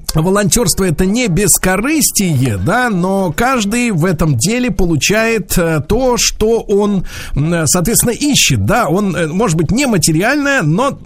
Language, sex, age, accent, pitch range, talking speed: Russian, male, 50-69, native, 155-205 Hz, 125 wpm